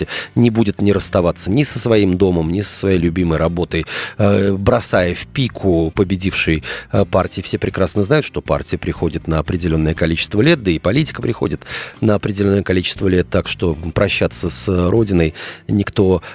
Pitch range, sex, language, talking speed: 90-125 Hz, male, Russian, 155 wpm